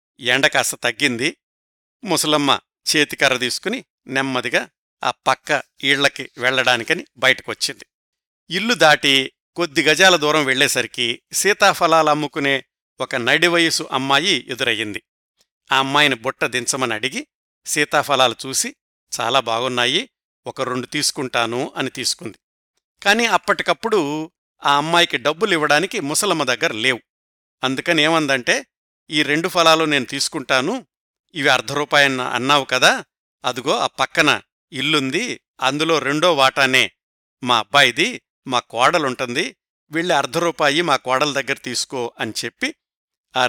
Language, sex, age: Telugu, male, 60-79